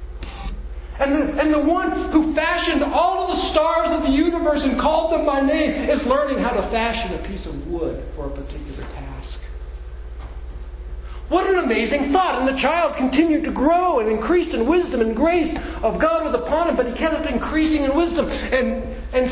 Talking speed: 185 wpm